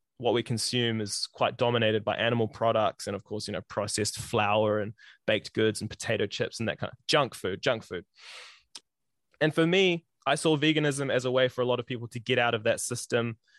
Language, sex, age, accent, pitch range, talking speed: English, male, 20-39, Australian, 115-140 Hz, 220 wpm